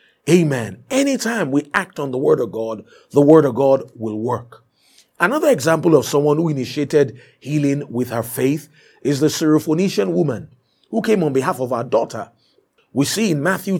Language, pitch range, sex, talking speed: English, 130-165 Hz, male, 175 wpm